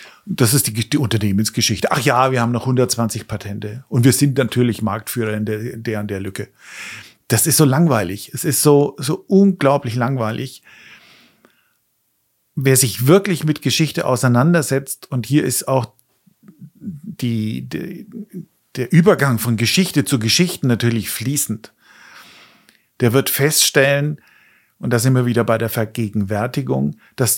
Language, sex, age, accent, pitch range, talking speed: German, male, 50-69, German, 120-150 Hz, 140 wpm